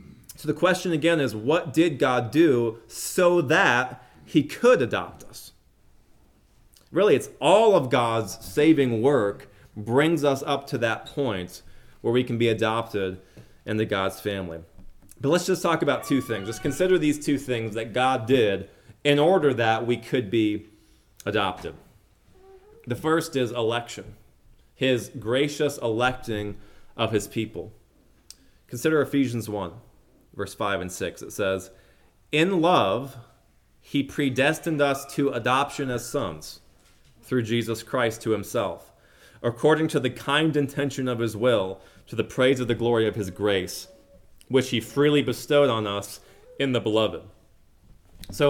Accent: American